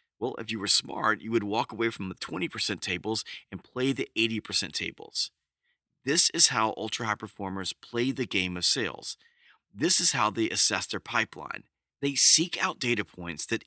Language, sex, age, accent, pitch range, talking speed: English, male, 40-59, American, 105-140 Hz, 180 wpm